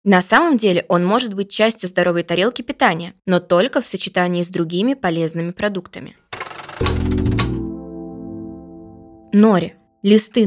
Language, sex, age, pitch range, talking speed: Russian, female, 20-39, 180-235 Hz, 115 wpm